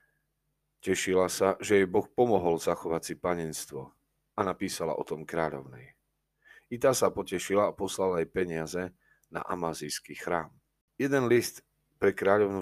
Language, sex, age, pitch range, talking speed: Slovak, male, 40-59, 85-100 Hz, 140 wpm